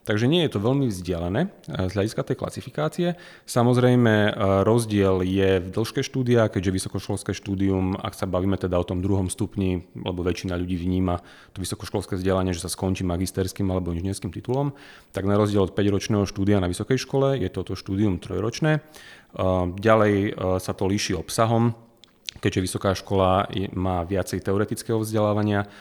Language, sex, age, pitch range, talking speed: Slovak, male, 30-49, 95-105 Hz, 155 wpm